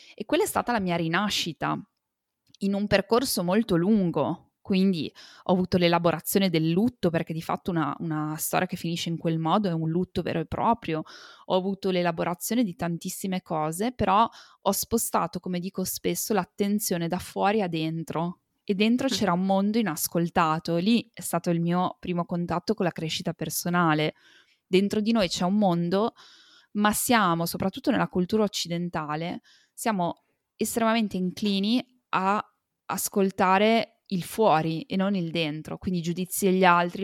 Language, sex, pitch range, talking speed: Italian, female, 170-210 Hz, 160 wpm